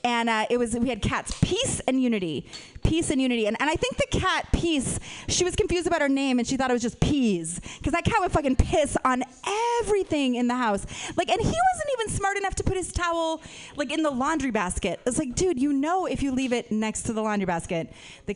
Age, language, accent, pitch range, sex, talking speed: 30-49, English, American, 220-335 Hz, female, 250 wpm